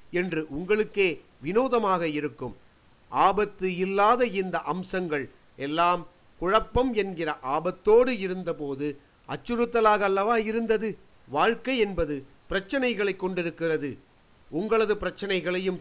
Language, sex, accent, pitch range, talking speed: Tamil, male, native, 160-205 Hz, 85 wpm